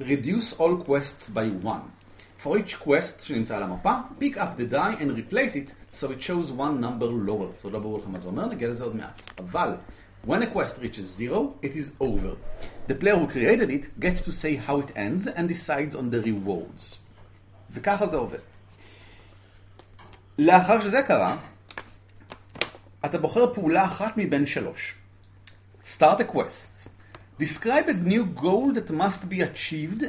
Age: 40-59